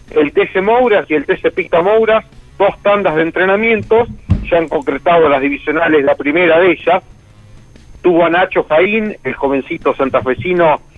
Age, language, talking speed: 40-59, Spanish, 155 wpm